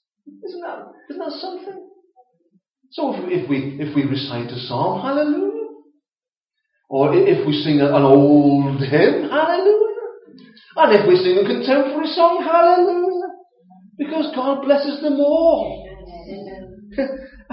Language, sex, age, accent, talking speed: English, male, 40-59, British, 125 wpm